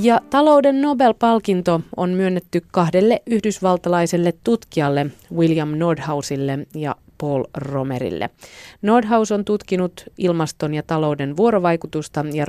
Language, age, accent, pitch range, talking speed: Finnish, 30-49, native, 150-215 Hz, 95 wpm